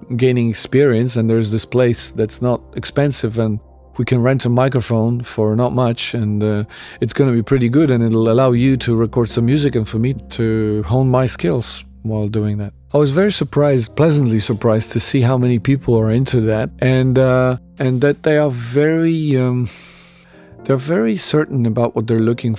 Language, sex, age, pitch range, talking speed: English, male, 40-59, 110-130 Hz, 195 wpm